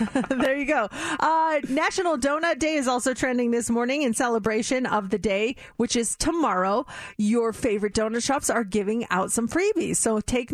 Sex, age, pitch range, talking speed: female, 30-49, 220-295 Hz, 175 wpm